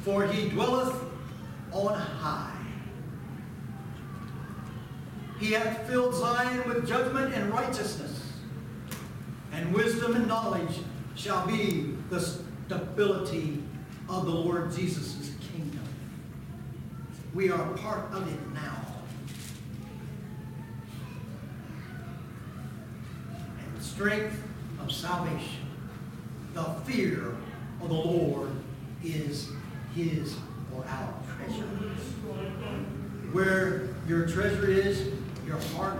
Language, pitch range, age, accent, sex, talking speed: English, 155-225 Hz, 60-79, American, male, 90 wpm